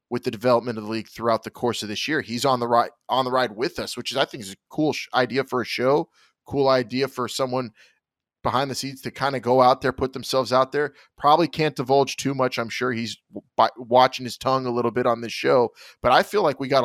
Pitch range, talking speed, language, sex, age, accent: 120-145 Hz, 265 wpm, English, male, 20-39, American